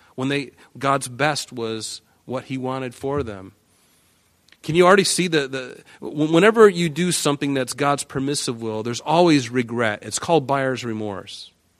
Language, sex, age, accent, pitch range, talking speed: English, male, 40-59, American, 105-135 Hz, 160 wpm